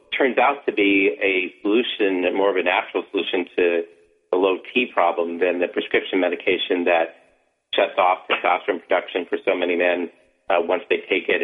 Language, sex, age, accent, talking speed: English, male, 40-59, American, 180 wpm